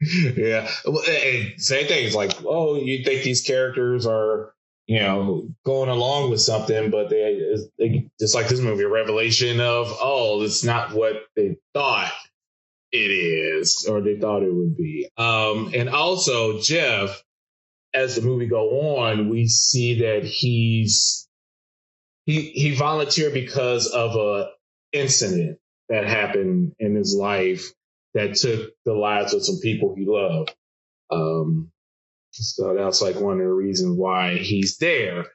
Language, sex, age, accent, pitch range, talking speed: English, male, 20-39, American, 110-135 Hz, 150 wpm